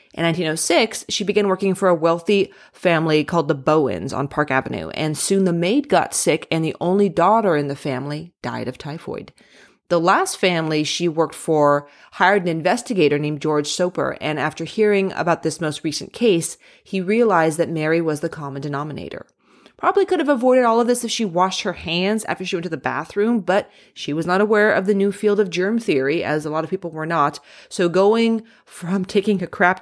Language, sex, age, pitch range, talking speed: English, female, 30-49, 155-200 Hz, 205 wpm